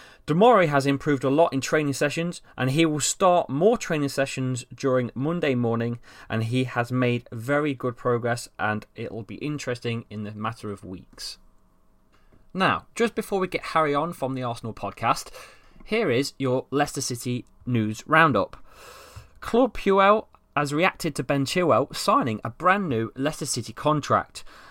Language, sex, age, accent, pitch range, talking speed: English, male, 30-49, British, 115-165 Hz, 165 wpm